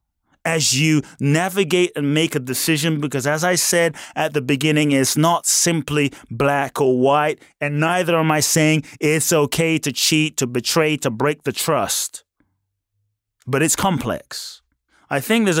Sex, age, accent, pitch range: male, 30-49, American, 140-180 Hz